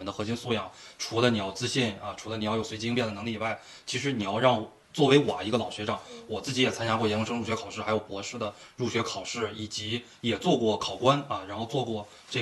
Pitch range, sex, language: 105-130 Hz, male, Chinese